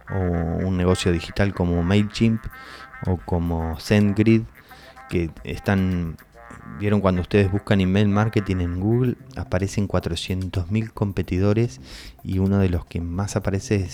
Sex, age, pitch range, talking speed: male, 20-39, 90-110 Hz, 125 wpm